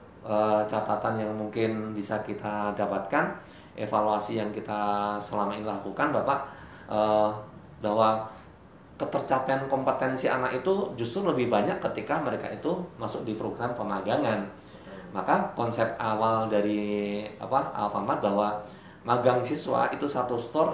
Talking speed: 120 wpm